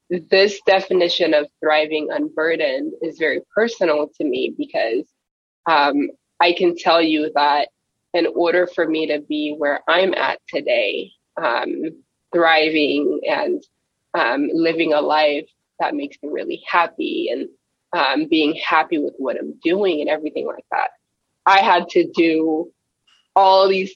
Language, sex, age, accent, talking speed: English, female, 20-39, American, 145 wpm